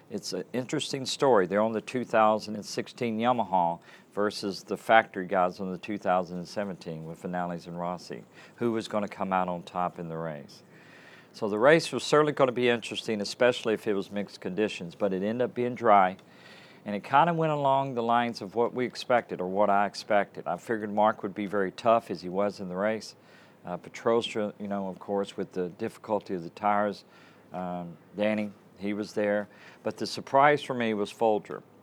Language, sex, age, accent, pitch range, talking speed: English, male, 50-69, American, 95-120 Hz, 200 wpm